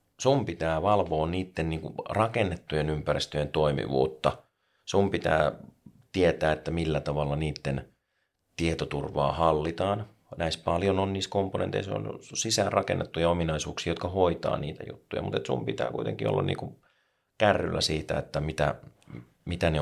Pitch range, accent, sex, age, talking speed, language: 75-85 Hz, native, male, 30-49, 125 wpm, Finnish